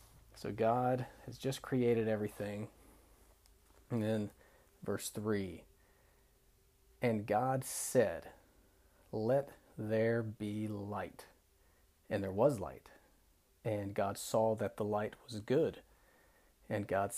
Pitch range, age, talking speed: 95-120 Hz, 40-59, 110 wpm